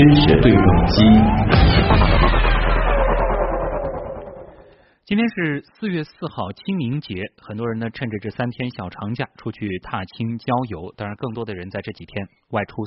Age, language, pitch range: 30-49, Chinese, 100-145 Hz